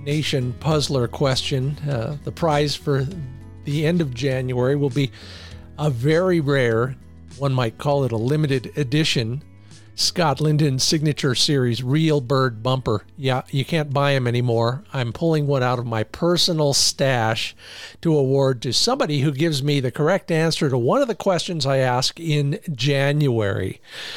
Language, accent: English, American